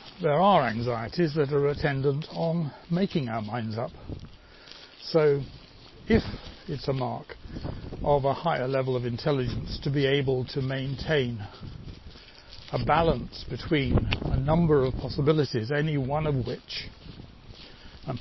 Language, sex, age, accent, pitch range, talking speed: English, male, 60-79, British, 120-155 Hz, 130 wpm